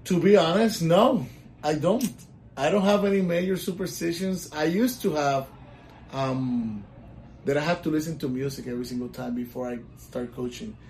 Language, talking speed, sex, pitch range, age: English, 170 wpm, male, 125-165 Hz, 30-49